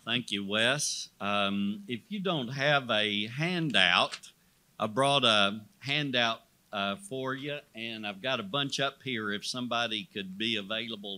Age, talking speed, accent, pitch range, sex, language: 50-69, 155 wpm, American, 105-140 Hz, male, English